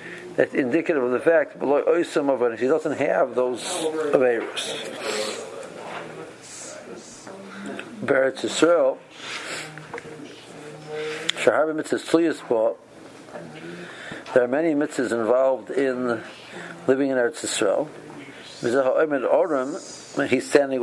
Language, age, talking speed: English, 60-79, 65 wpm